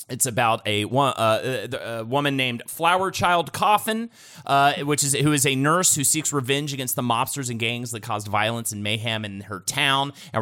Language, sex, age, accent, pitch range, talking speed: English, male, 30-49, American, 115-160 Hz, 190 wpm